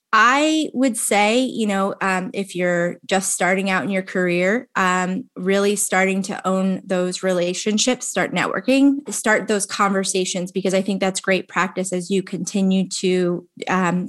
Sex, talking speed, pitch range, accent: female, 160 wpm, 185-215 Hz, American